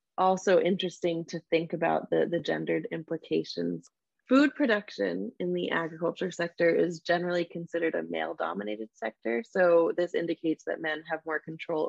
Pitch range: 130-185 Hz